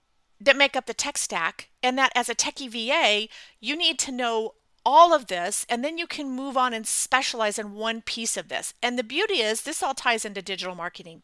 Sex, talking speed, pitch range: female, 225 wpm, 205-270 Hz